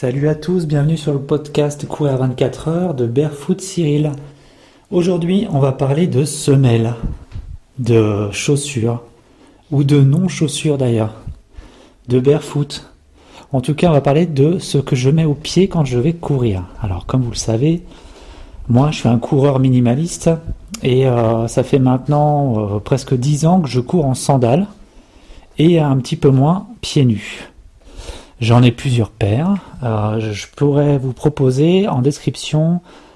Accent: French